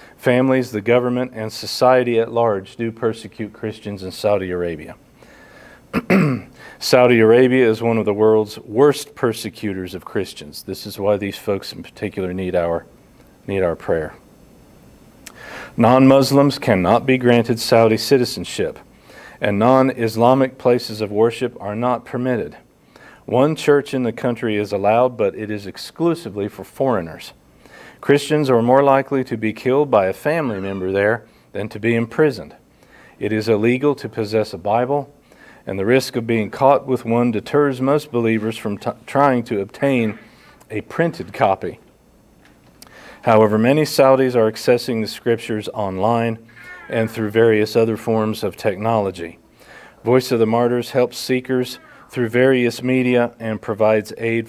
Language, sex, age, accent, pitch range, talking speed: English, male, 40-59, American, 105-125 Hz, 145 wpm